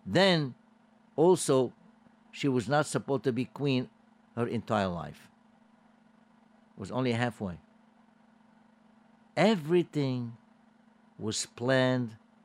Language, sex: English, male